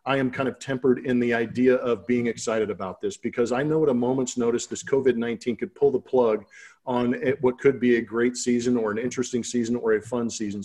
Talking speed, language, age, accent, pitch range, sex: 230 wpm, English, 40-59, American, 115-135 Hz, male